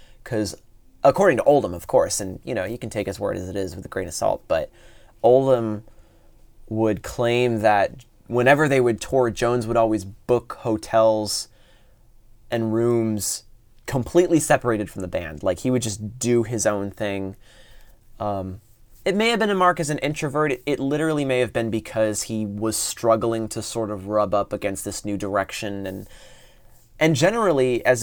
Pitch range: 105-130 Hz